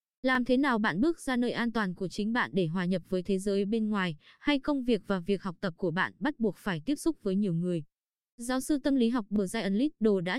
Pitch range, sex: 190-245 Hz, female